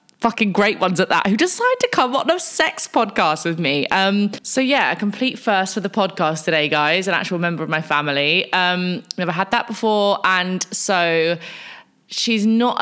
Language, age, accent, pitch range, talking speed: English, 20-39, British, 155-225 Hz, 190 wpm